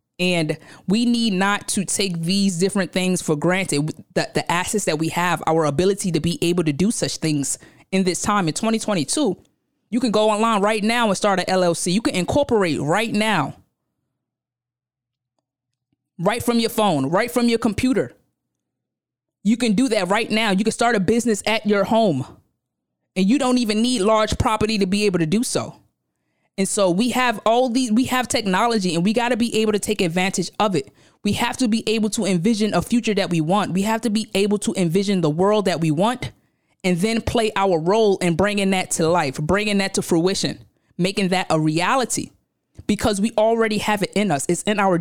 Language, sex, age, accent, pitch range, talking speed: English, female, 20-39, American, 175-220 Hz, 205 wpm